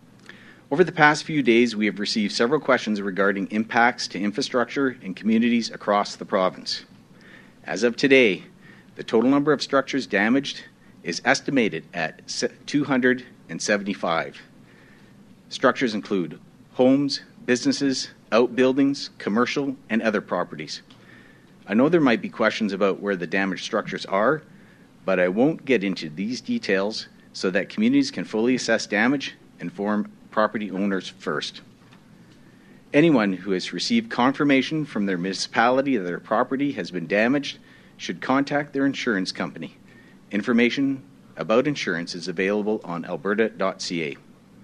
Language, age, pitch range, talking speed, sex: English, 50-69, 100-135 Hz, 135 wpm, male